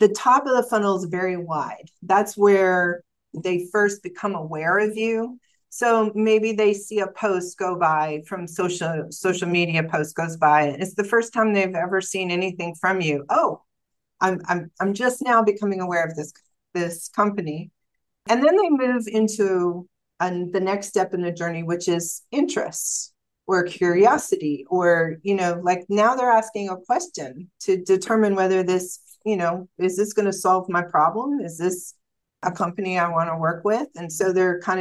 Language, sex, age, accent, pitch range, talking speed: English, female, 40-59, American, 170-205 Hz, 185 wpm